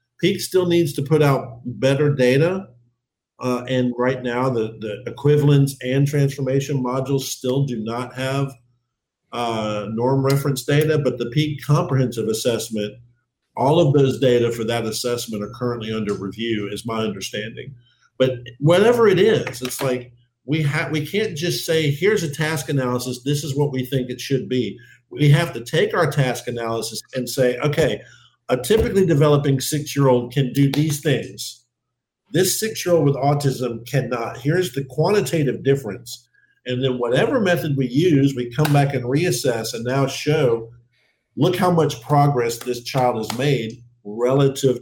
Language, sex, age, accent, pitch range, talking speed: English, male, 50-69, American, 120-145 Hz, 160 wpm